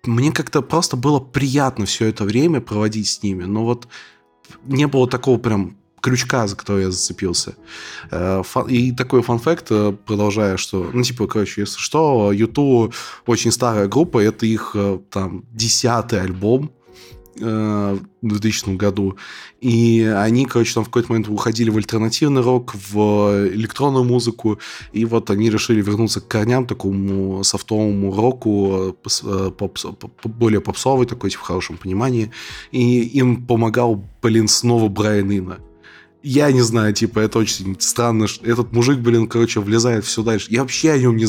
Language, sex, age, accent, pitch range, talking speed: Russian, male, 20-39, native, 100-120 Hz, 155 wpm